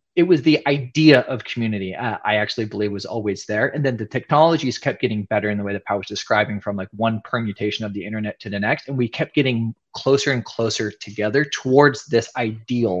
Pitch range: 105-125 Hz